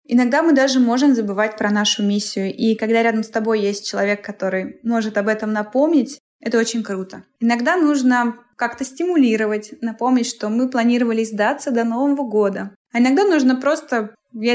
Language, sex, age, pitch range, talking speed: Russian, female, 20-39, 220-265 Hz, 165 wpm